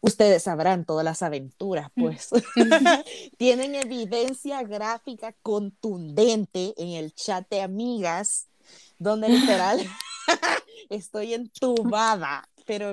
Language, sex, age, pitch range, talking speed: Spanish, female, 20-39, 155-210 Hz, 95 wpm